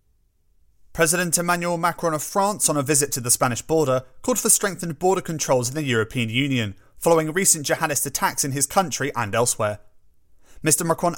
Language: English